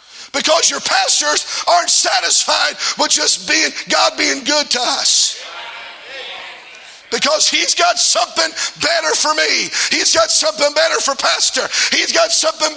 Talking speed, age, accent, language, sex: 135 wpm, 50-69, American, English, male